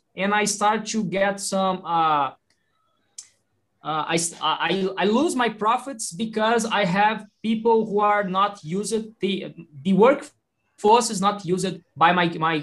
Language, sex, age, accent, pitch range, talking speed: English, male, 20-39, Brazilian, 175-225 Hz, 145 wpm